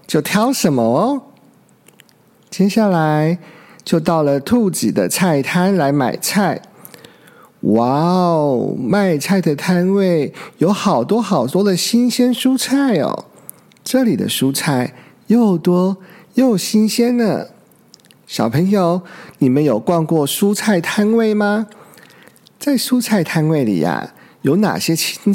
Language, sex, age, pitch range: Chinese, male, 50-69, 165-215 Hz